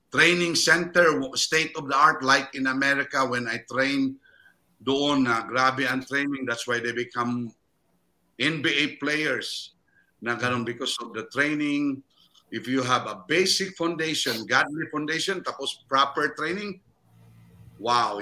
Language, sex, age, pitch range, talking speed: English, male, 50-69, 125-160 Hz, 130 wpm